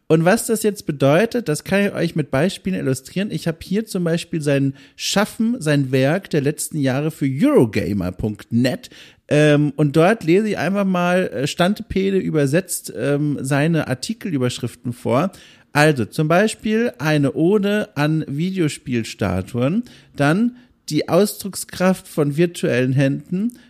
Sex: male